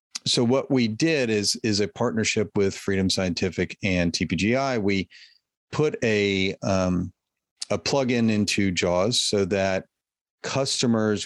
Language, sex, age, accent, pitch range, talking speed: English, male, 40-59, American, 90-105 Hz, 130 wpm